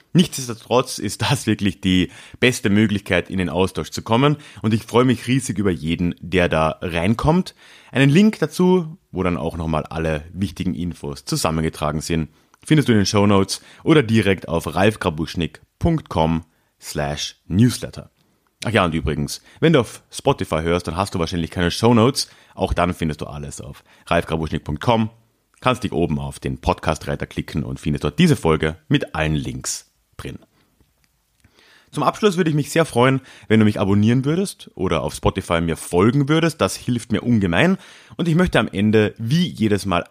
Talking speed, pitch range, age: 165 wpm, 85-125 Hz, 30-49